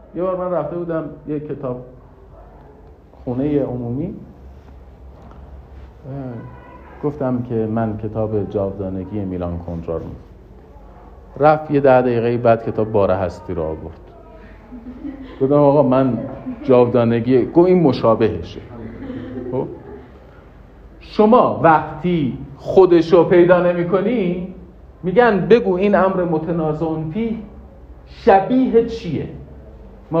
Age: 50-69